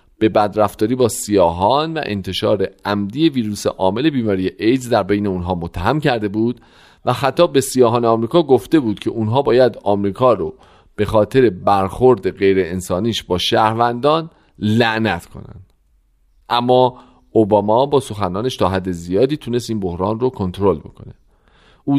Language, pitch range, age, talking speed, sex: Persian, 100-135 Hz, 40-59, 140 wpm, male